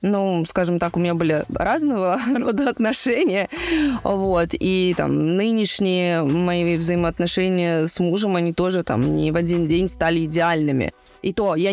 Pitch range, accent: 175-225 Hz, native